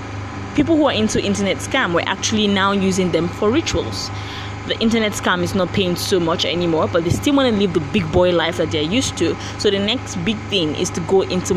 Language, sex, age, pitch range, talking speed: English, female, 20-39, 165-210 Hz, 235 wpm